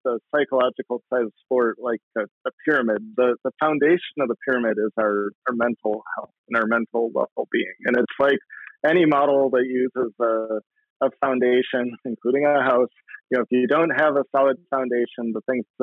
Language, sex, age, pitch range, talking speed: English, male, 40-59, 115-135 Hz, 180 wpm